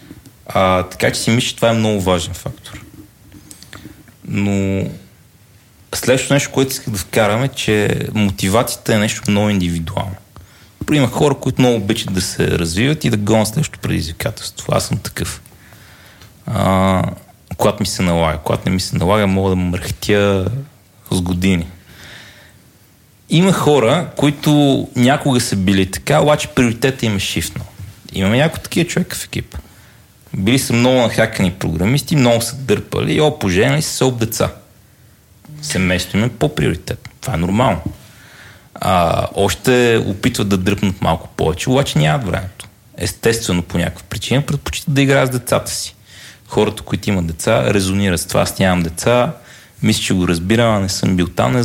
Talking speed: 155 wpm